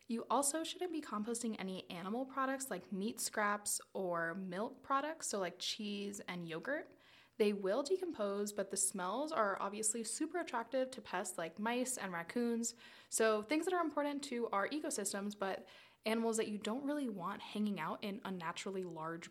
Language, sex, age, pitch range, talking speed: English, female, 10-29, 195-260 Hz, 170 wpm